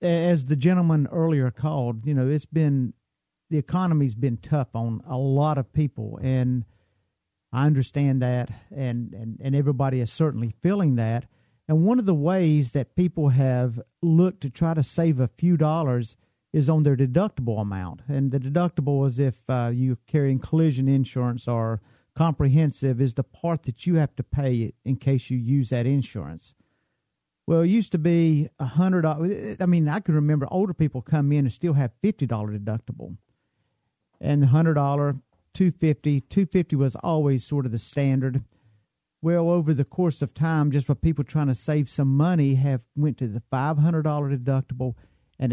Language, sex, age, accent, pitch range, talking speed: English, male, 50-69, American, 125-155 Hz, 165 wpm